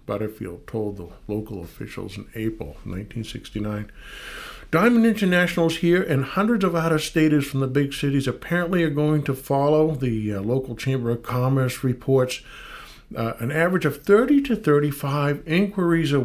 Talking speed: 150 wpm